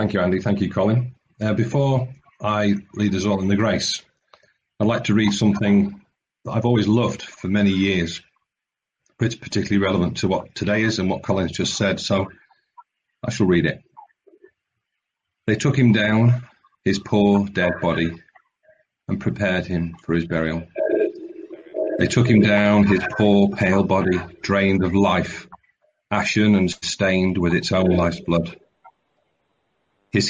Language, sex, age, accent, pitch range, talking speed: English, male, 40-59, British, 95-115 Hz, 155 wpm